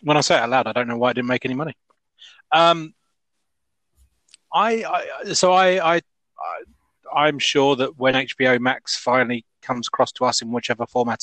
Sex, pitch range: male, 120-145 Hz